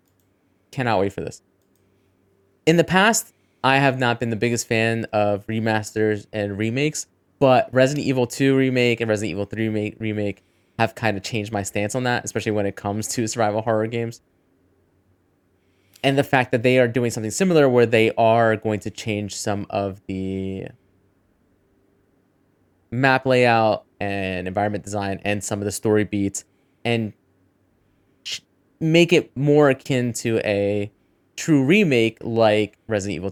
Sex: male